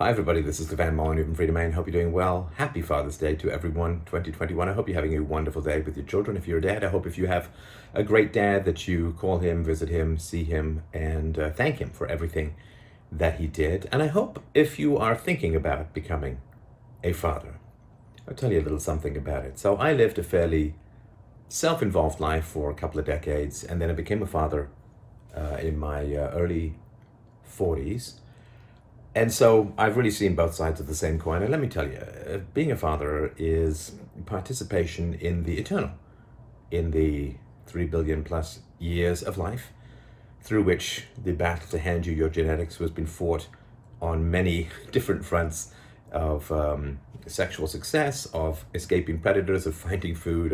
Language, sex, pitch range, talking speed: English, male, 80-110 Hz, 190 wpm